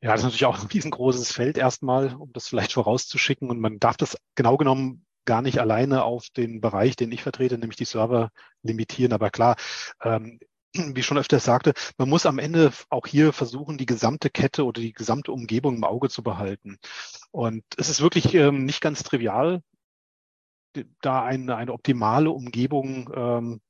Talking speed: 175 wpm